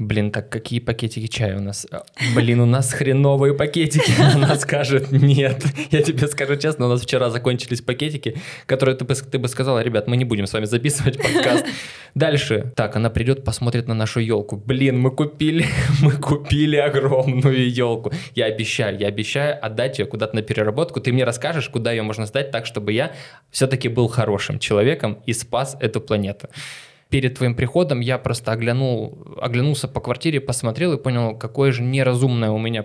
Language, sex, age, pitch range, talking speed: Ukrainian, male, 20-39, 120-140 Hz, 175 wpm